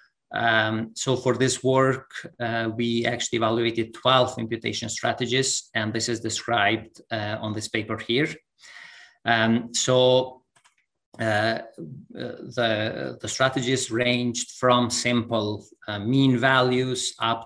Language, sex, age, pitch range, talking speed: English, male, 30-49, 110-130 Hz, 115 wpm